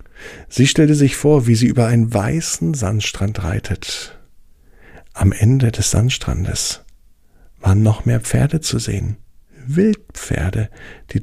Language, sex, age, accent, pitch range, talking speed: German, male, 50-69, German, 105-125 Hz, 125 wpm